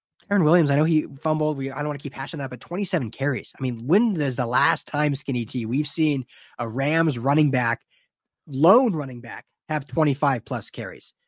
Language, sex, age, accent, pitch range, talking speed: English, male, 20-39, American, 125-160 Hz, 195 wpm